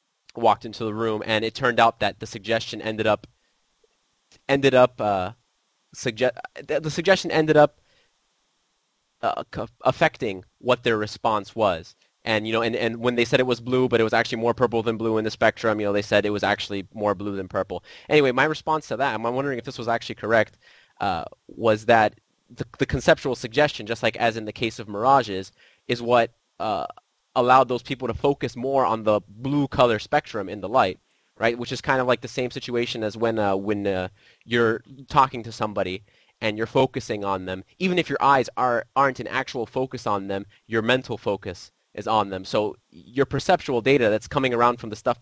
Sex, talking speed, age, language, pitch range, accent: male, 205 wpm, 20-39, English, 105-130 Hz, American